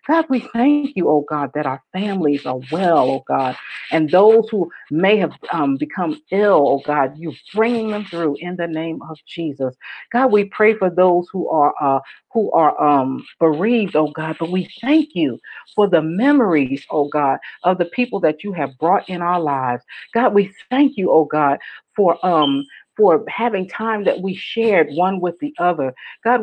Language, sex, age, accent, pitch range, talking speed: English, female, 50-69, American, 160-235 Hz, 190 wpm